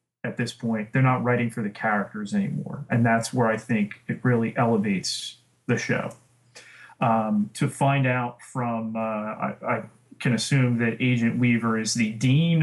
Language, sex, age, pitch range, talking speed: English, male, 30-49, 110-130 Hz, 170 wpm